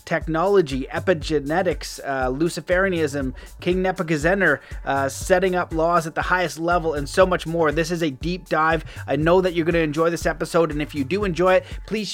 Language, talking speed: English, 190 wpm